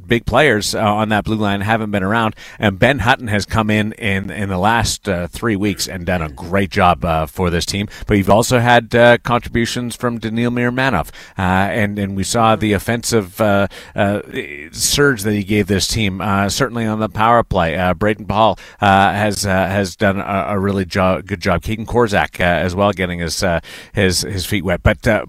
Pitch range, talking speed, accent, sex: 95-115 Hz, 215 wpm, American, male